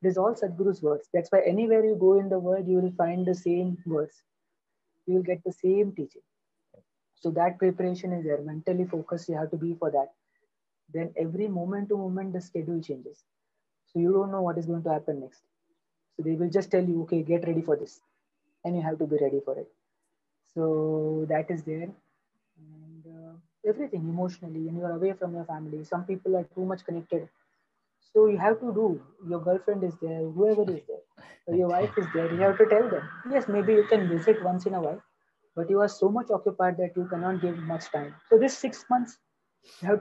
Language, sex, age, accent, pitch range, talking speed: English, female, 30-49, Indian, 165-205 Hz, 215 wpm